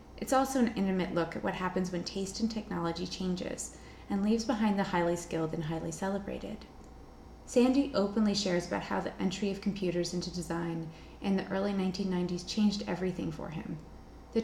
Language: English